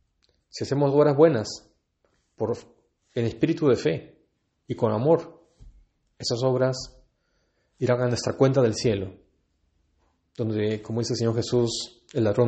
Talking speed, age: 135 wpm, 30-49